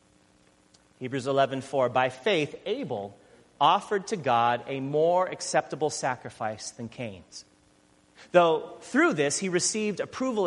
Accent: American